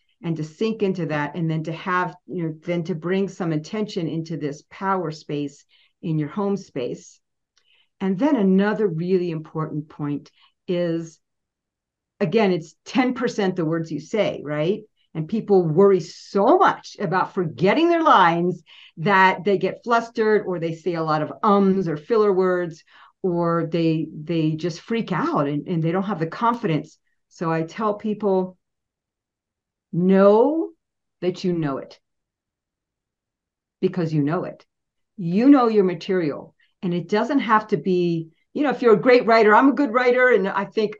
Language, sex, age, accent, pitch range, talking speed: English, female, 50-69, American, 165-220 Hz, 165 wpm